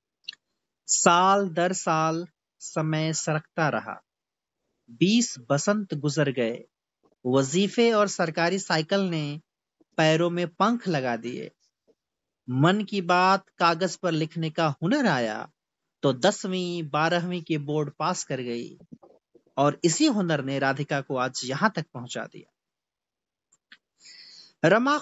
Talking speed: 120 wpm